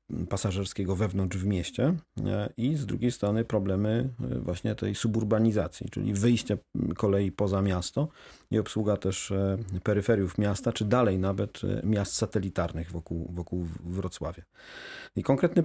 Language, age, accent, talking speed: Polish, 40-59, native, 125 wpm